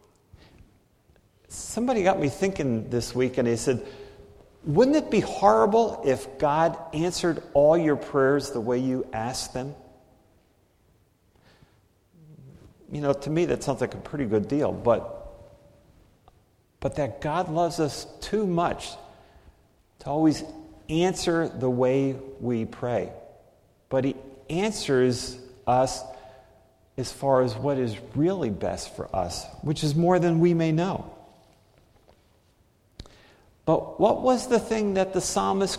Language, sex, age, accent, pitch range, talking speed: English, male, 50-69, American, 125-170 Hz, 130 wpm